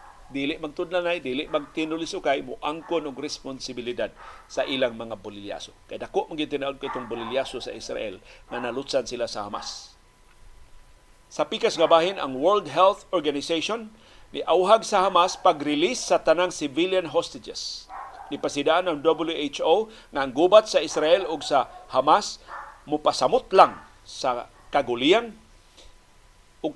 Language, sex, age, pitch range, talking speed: Filipino, male, 50-69, 150-200 Hz, 130 wpm